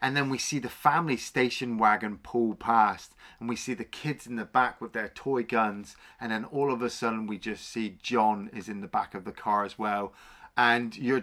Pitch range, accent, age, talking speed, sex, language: 125-180 Hz, British, 30-49, 230 wpm, male, English